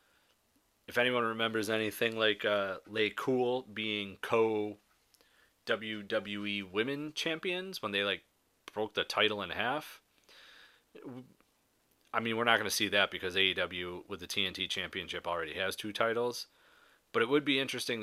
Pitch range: 105-145 Hz